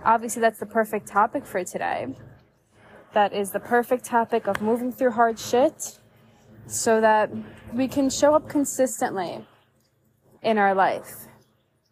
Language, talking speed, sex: English, 135 wpm, female